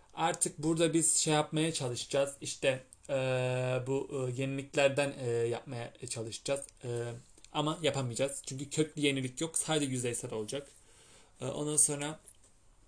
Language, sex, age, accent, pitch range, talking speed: Turkish, male, 30-49, native, 120-145 Hz, 125 wpm